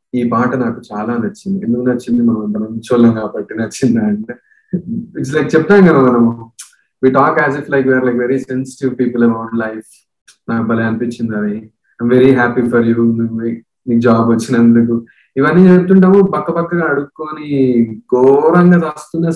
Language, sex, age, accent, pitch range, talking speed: Telugu, male, 20-39, native, 115-140 Hz, 130 wpm